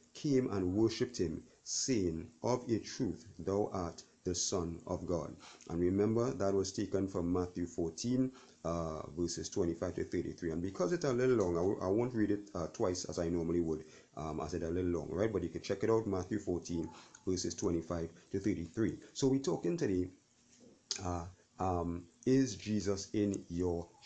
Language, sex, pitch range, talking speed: English, male, 85-110 Hz, 180 wpm